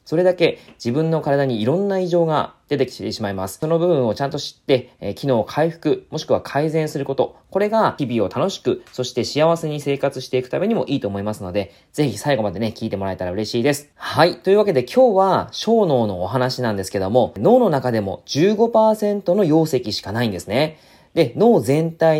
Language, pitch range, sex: Japanese, 115-180 Hz, male